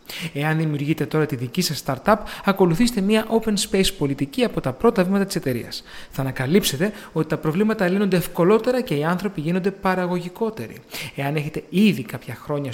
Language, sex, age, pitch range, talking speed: Greek, male, 30-49, 135-195 Hz, 165 wpm